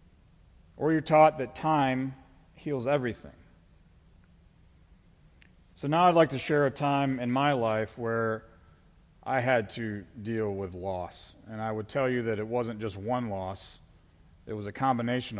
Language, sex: English, male